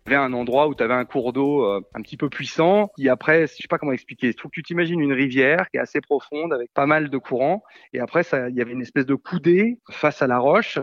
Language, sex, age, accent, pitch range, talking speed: French, male, 30-49, French, 125-155 Hz, 290 wpm